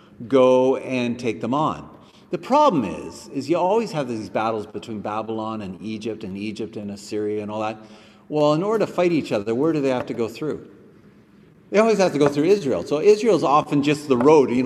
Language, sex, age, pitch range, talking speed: English, male, 40-59, 110-180 Hz, 215 wpm